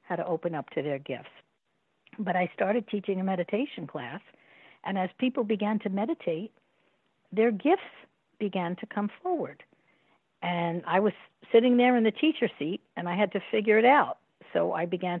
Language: English